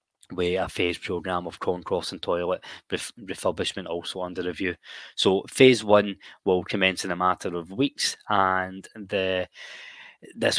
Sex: male